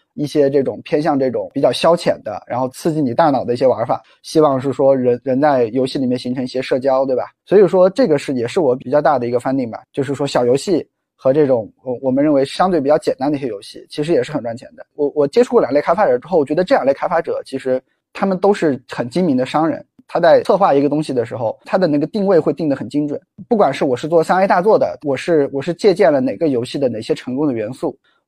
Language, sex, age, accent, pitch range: Chinese, male, 20-39, native, 130-165 Hz